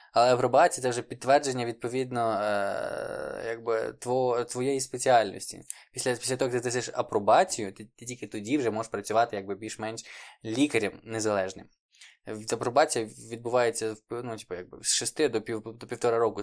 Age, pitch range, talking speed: 20-39, 110-125 Hz, 150 wpm